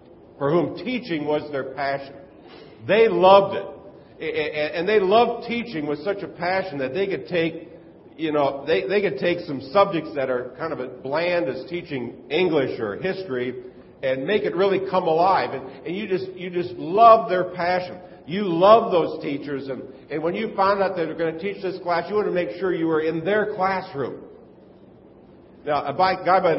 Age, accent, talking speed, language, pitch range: 50-69, American, 195 wpm, English, 145-190 Hz